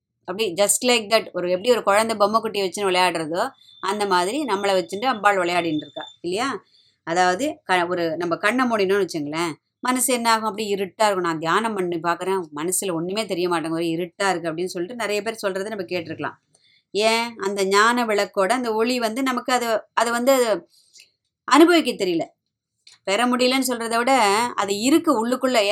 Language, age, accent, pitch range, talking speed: Tamil, 20-39, native, 180-235 Hz, 155 wpm